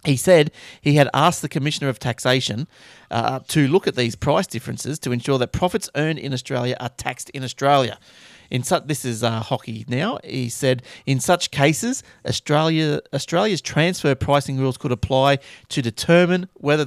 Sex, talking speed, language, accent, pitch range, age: male, 175 wpm, English, Australian, 125-150 Hz, 30-49